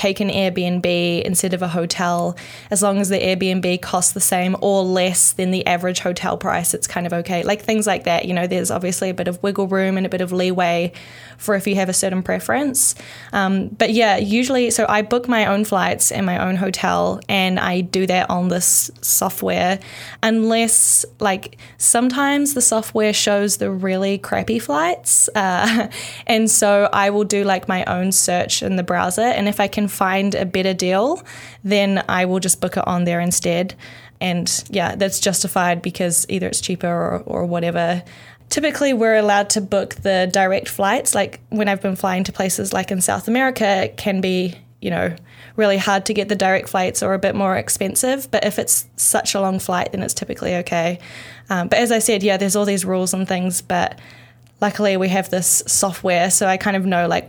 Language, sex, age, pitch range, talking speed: English, female, 10-29, 180-205 Hz, 205 wpm